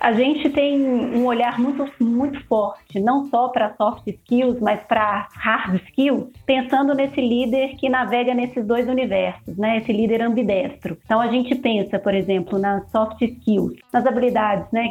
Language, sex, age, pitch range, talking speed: Portuguese, female, 30-49, 210-265 Hz, 165 wpm